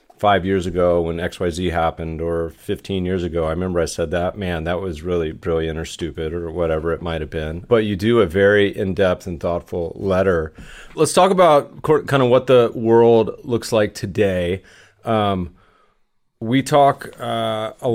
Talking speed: 175 wpm